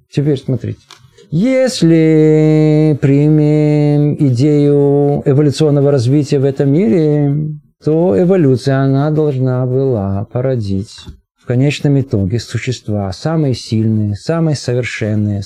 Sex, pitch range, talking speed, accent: male, 120-160 Hz, 95 wpm, native